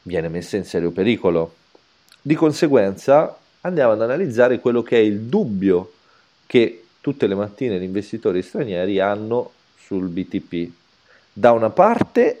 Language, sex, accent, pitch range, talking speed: Italian, male, native, 85-110 Hz, 135 wpm